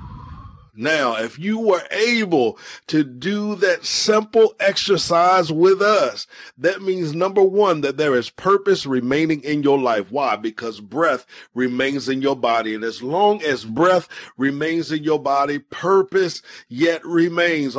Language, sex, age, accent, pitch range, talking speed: English, male, 40-59, American, 130-190 Hz, 145 wpm